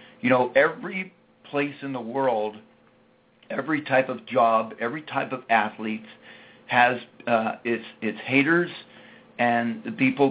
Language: English